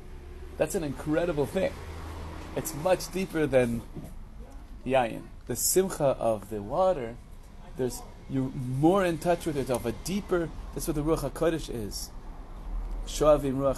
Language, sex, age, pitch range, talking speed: English, male, 30-49, 95-140 Hz, 135 wpm